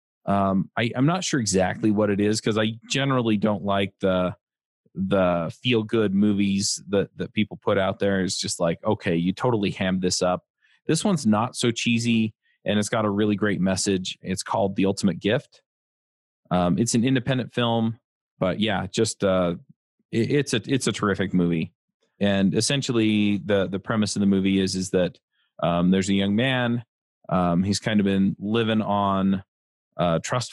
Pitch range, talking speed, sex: 95-110 Hz, 180 wpm, male